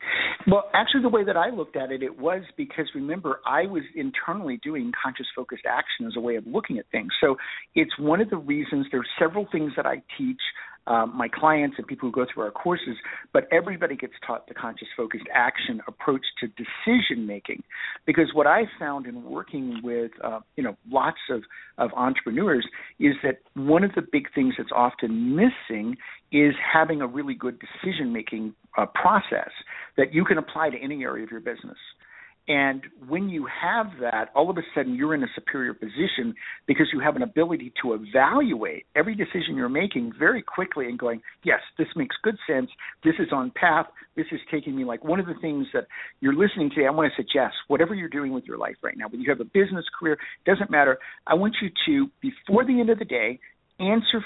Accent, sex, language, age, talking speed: American, male, English, 50-69, 210 wpm